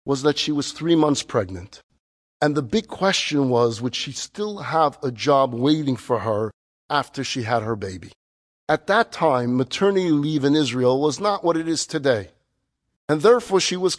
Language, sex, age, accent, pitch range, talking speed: English, male, 50-69, American, 140-200 Hz, 185 wpm